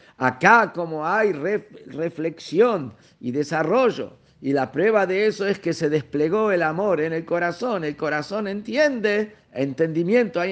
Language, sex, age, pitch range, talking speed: Spanish, male, 50-69, 150-215 Hz, 150 wpm